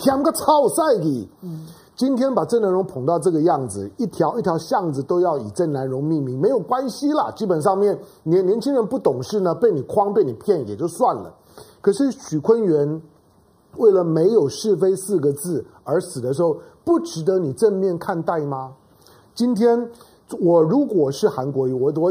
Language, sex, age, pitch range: Chinese, male, 50-69, 140-230 Hz